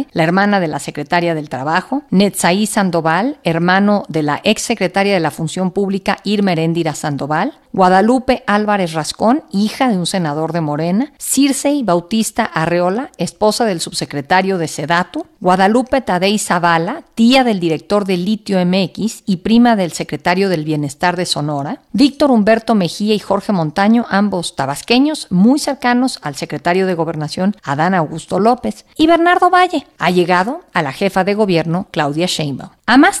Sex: female